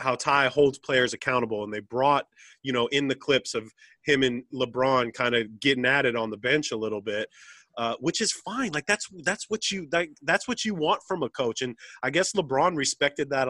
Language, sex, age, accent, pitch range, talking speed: English, male, 30-49, American, 130-170 Hz, 220 wpm